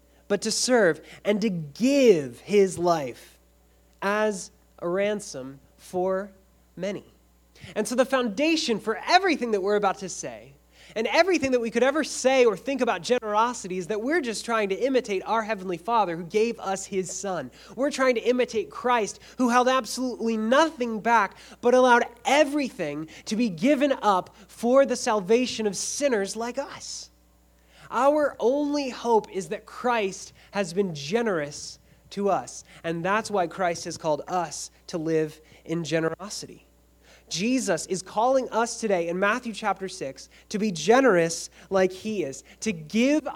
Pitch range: 170-240 Hz